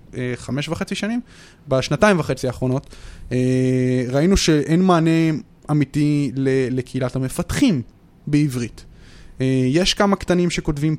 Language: English